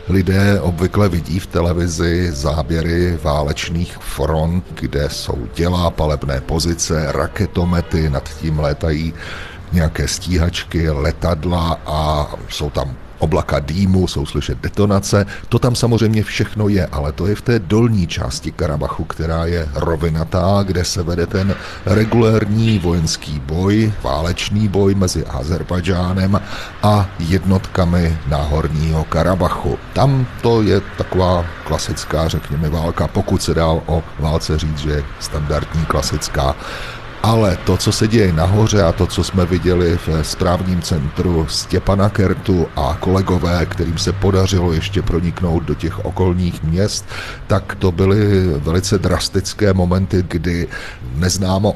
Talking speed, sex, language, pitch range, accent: 130 wpm, male, Czech, 80-100 Hz, native